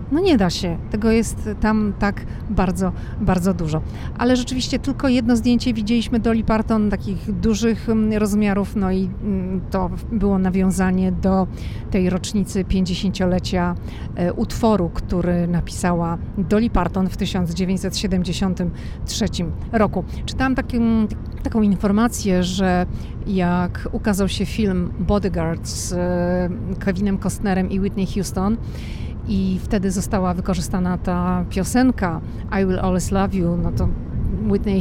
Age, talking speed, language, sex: 40-59, 120 wpm, Polish, female